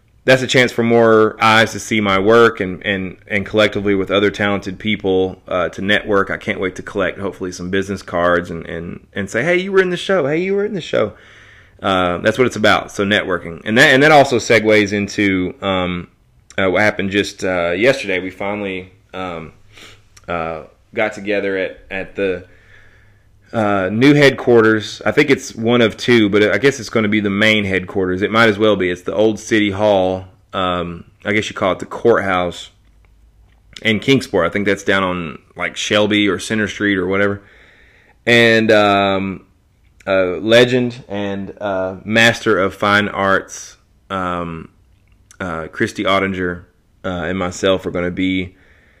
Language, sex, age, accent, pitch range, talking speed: English, male, 30-49, American, 95-110 Hz, 180 wpm